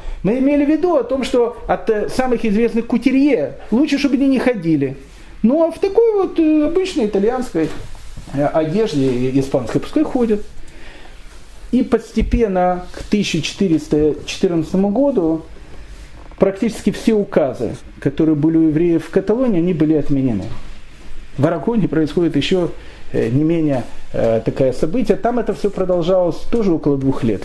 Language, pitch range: Russian, 145-215 Hz